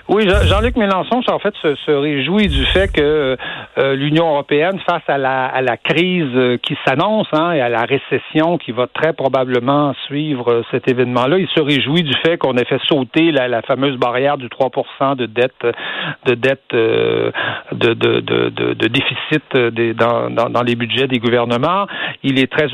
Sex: male